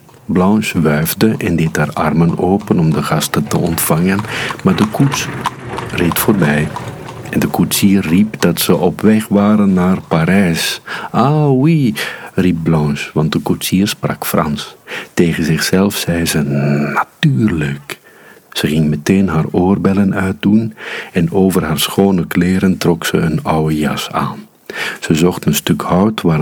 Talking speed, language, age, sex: 150 wpm, Dutch, 50-69, male